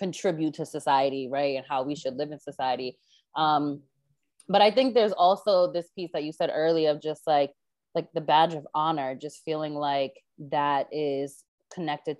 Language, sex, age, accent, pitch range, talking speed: English, female, 20-39, American, 145-215 Hz, 180 wpm